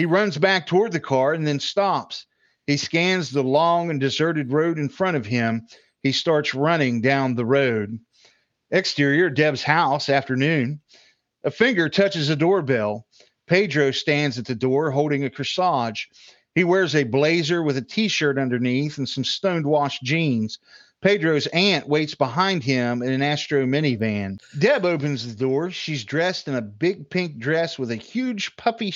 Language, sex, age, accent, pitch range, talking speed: English, male, 50-69, American, 135-170 Hz, 165 wpm